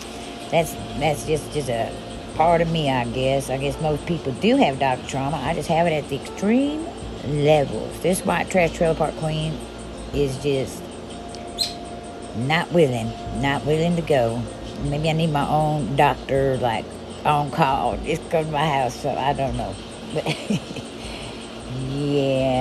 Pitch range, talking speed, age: 125-160 Hz, 160 wpm, 60-79